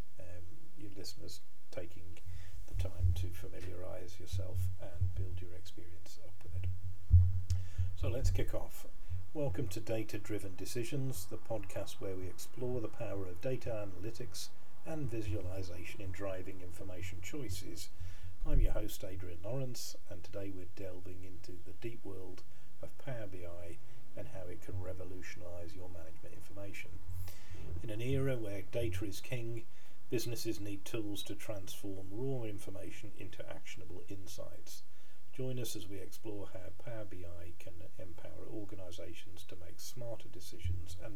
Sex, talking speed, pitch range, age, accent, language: male, 140 wpm, 90-110 Hz, 40-59, British, English